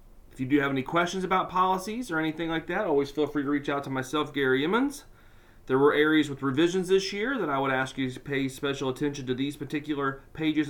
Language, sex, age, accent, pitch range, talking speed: English, male, 40-59, American, 115-145 Hz, 235 wpm